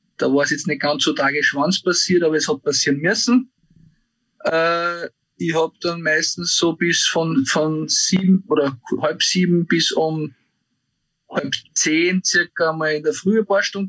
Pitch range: 145-185 Hz